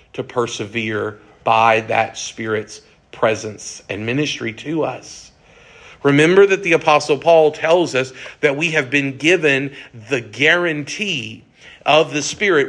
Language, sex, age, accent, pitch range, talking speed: English, male, 50-69, American, 130-165 Hz, 130 wpm